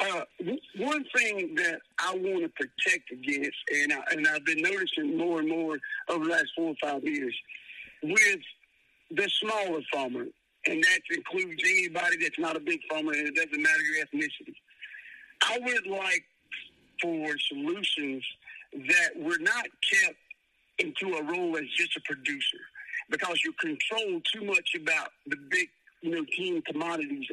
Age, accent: 50-69, American